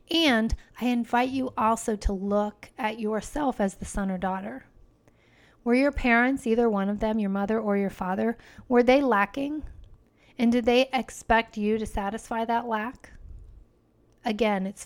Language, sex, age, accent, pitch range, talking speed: English, female, 40-59, American, 205-245 Hz, 160 wpm